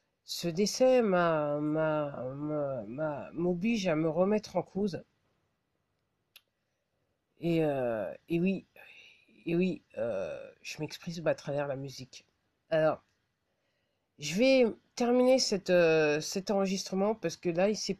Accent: French